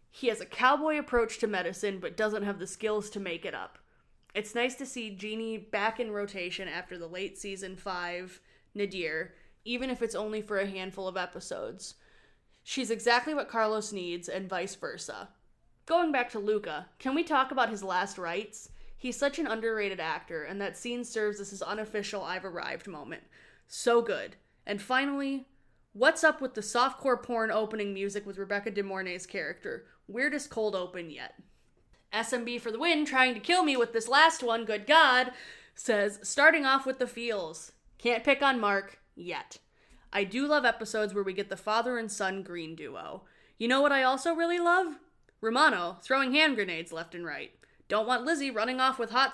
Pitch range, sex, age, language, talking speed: 200-265 Hz, female, 20-39, English, 185 wpm